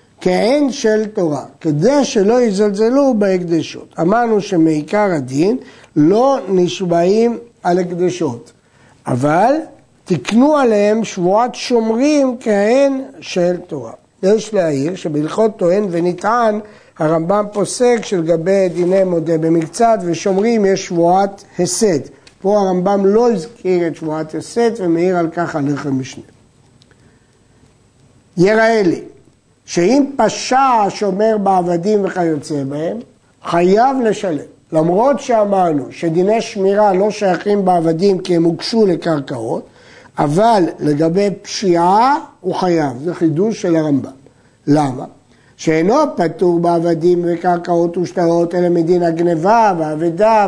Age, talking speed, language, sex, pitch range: 60-79, 105 wpm, Hebrew, male, 165-210 Hz